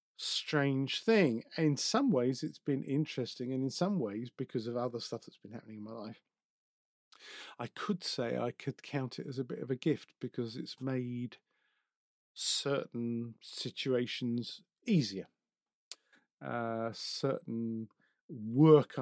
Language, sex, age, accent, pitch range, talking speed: English, male, 50-69, British, 120-150 Hz, 140 wpm